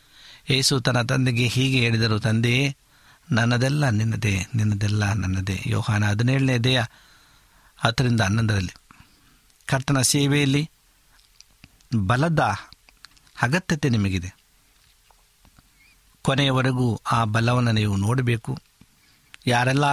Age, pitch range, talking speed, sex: 60-79, 110-135 Hz, 80 wpm, male